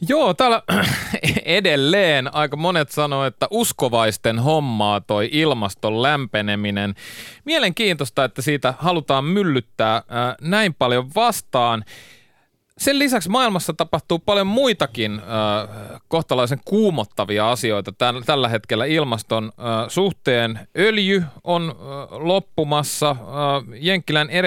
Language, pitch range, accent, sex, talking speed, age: Finnish, 120-170 Hz, native, male, 90 wpm, 30-49